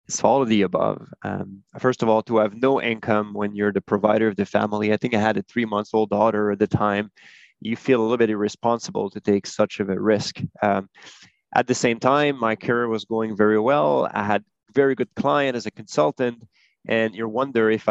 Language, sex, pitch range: English, male, 110-130 Hz